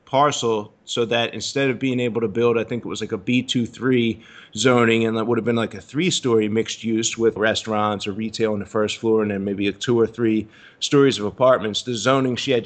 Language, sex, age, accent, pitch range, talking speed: English, male, 30-49, American, 110-125 Hz, 230 wpm